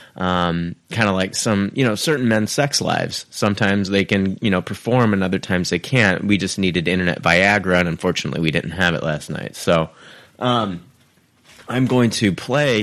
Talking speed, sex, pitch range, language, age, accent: 190 wpm, male, 90-130 Hz, English, 30-49, American